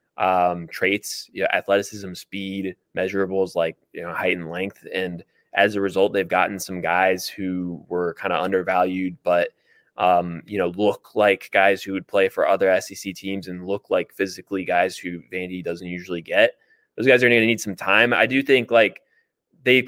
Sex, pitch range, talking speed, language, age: male, 95-110 Hz, 190 wpm, English, 20-39